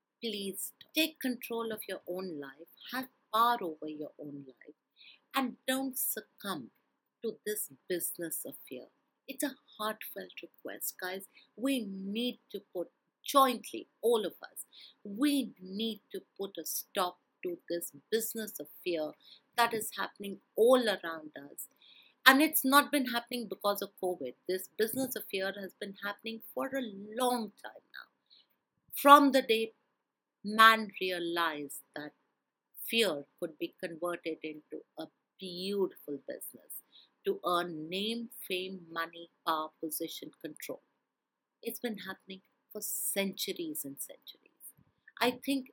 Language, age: English, 50-69